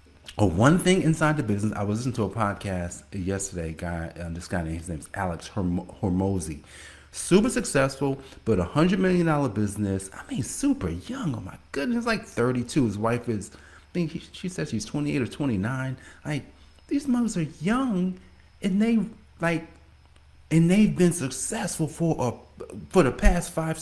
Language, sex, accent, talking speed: English, male, American, 180 wpm